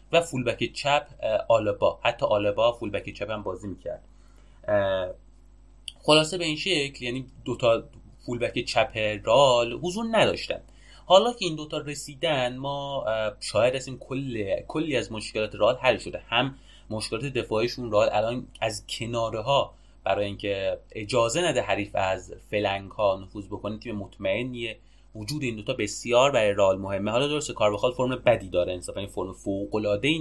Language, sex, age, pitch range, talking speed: English, male, 30-49, 100-130 Hz, 150 wpm